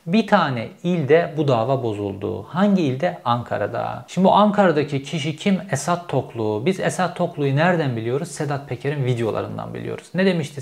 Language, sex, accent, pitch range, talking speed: Turkish, male, native, 125-165 Hz, 155 wpm